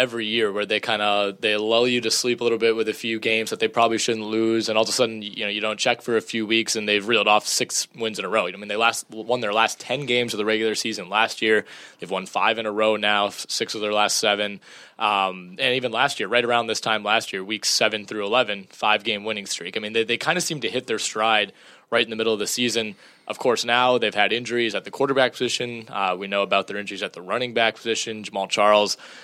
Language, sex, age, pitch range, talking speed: English, male, 20-39, 105-120 Hz, 275 wpm